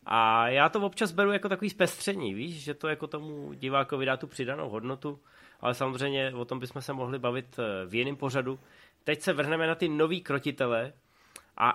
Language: Czech